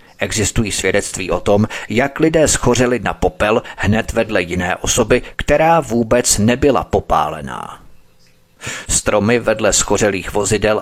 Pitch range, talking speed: 100-125 Hz, 115 wpm